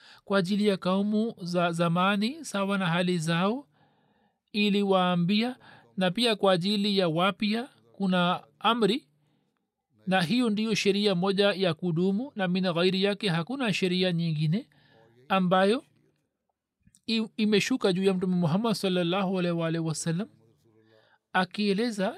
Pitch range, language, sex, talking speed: 170-205 Hz, Swahili, male, 120 wpm